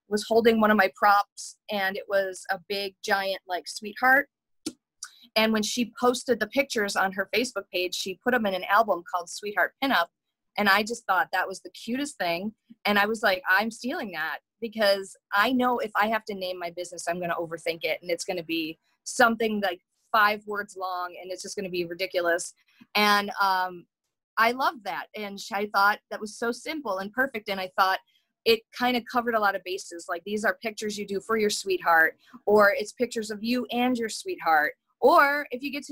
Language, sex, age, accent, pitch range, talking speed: English, female, 30-49, American, 195-235 Hz, 215 wpm